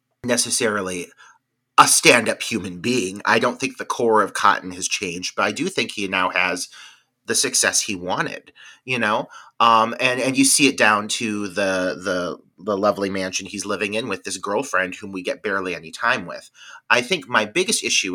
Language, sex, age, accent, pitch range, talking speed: English, male, 30-49, American, 100-130 Hz, 190 wpm